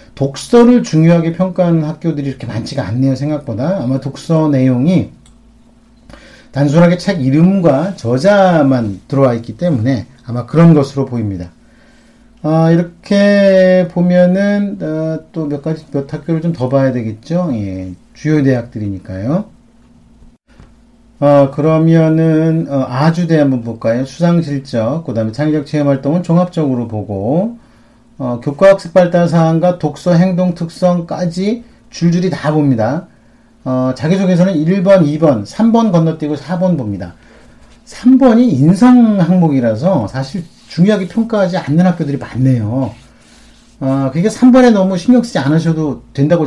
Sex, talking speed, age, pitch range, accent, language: male, 105 wpm, 40-59, 130-180 Hz, Korean, English